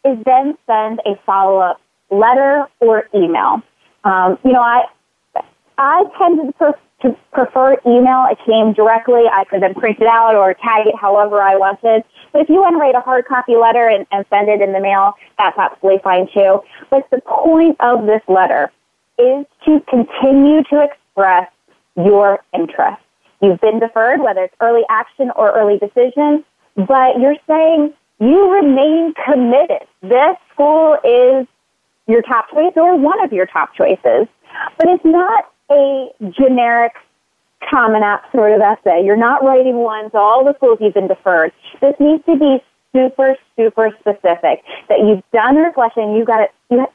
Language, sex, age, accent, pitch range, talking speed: English, female, 20-39, American, 210-285 Hz, 165 wpm